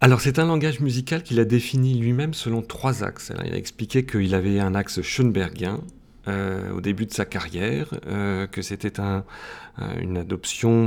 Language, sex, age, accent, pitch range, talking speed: French, male, 40-59, French, 95-120 Hz, 180 wpm